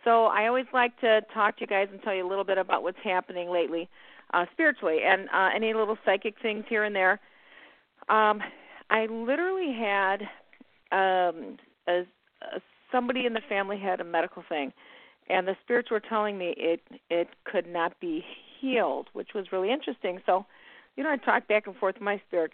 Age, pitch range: 40-59, 180-220 Hz